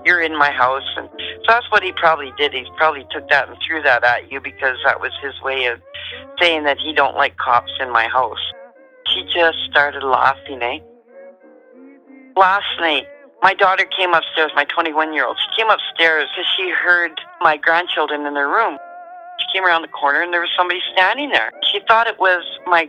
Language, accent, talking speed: English, American, 195 wpm